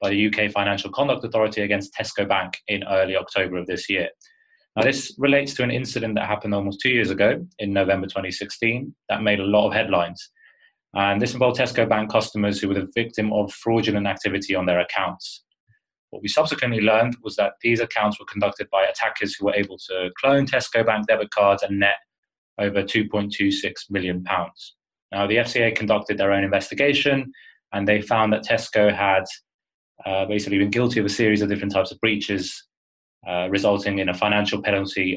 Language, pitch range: English, 100-120 Hz